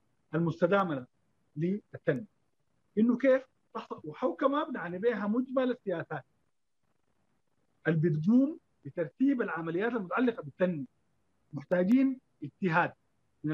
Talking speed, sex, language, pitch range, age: 80 wpm, male, Arabic, 170-240 Hz, 50-69